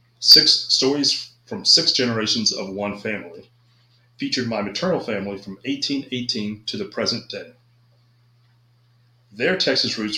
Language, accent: English, American